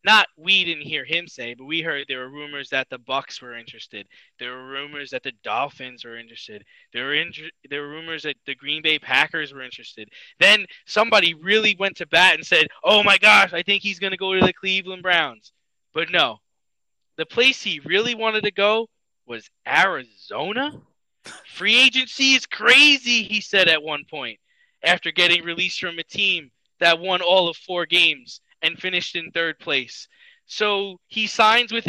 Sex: male